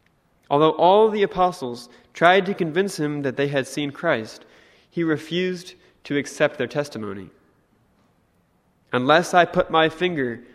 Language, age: English, 20-39